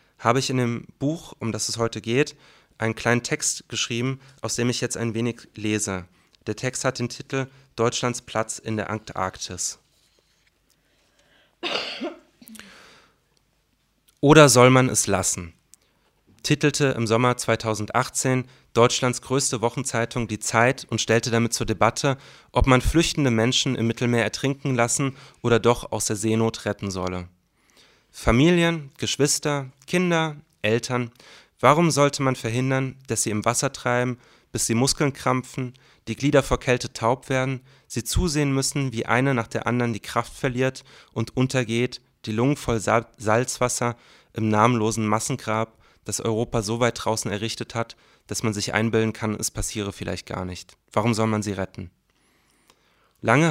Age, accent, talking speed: 30-49, German, 145 wpm